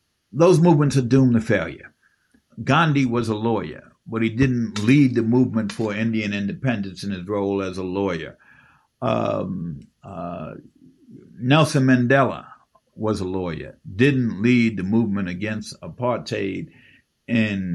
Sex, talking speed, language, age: male, 130 wpm, English, 50-69